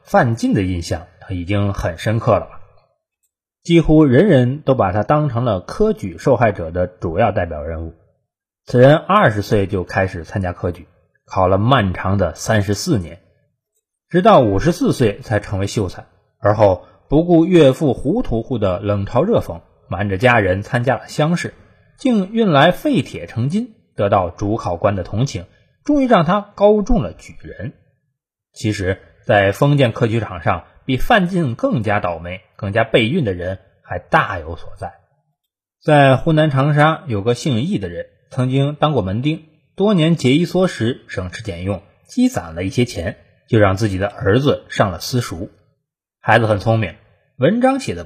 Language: Chinese